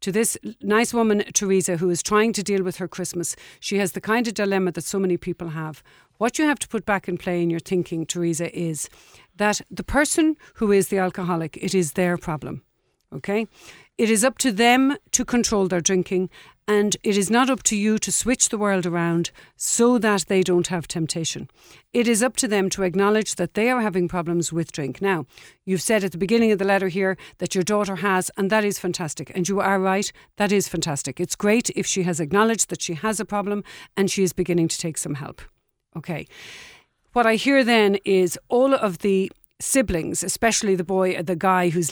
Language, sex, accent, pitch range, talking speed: English, female, Irish, 175-215 Hz, 215 wpm